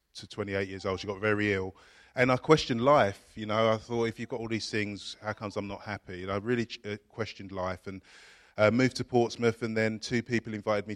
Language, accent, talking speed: English, British, 235 wpm